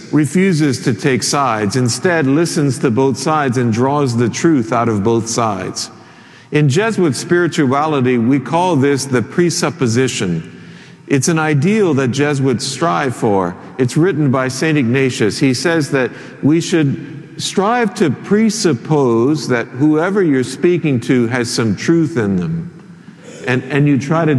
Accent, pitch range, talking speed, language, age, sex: American, 125-160 Hz, 150 wpm, English, 50-69, male